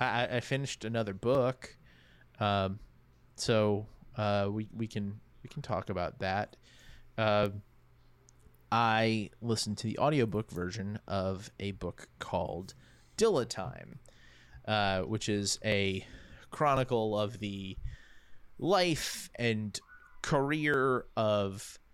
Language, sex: English, male